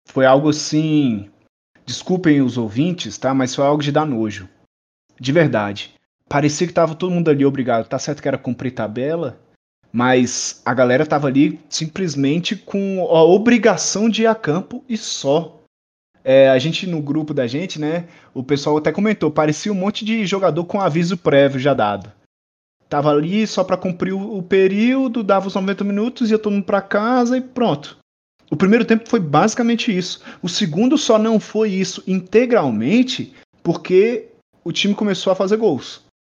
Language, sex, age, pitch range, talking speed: Portuguese, male, 20-39, 140-200 Hz, 170 wpm